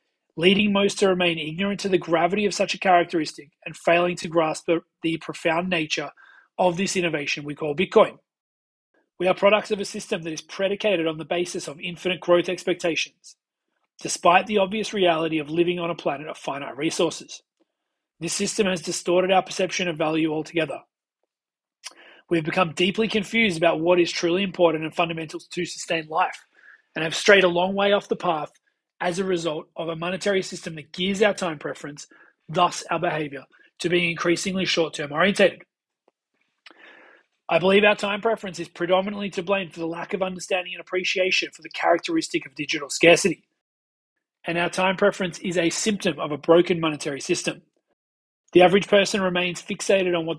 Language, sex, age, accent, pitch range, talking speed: English, male, 30-49, Australian, 165-190 Hz, 175 wpm